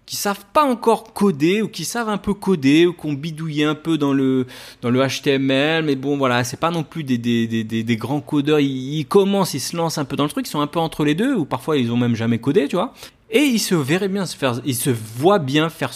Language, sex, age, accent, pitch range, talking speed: French, male, 30-49, French, 120-190 Hz, 280 wpm